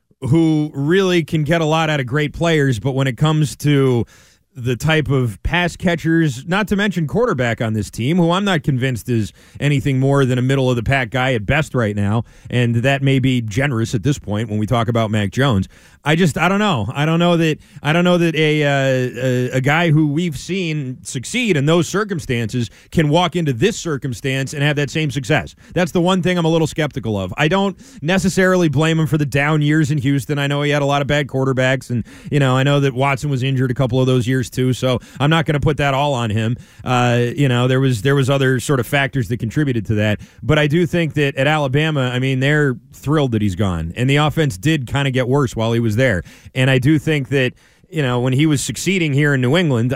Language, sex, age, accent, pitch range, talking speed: English, male, 30-49, American, 125-155 Hz, 245 wpm